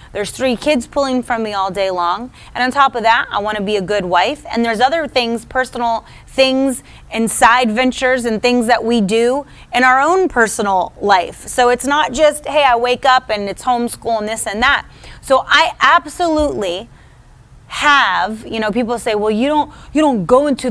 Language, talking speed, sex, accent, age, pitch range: English, 200 wpm, female, American, 30-49, 220-285 Hz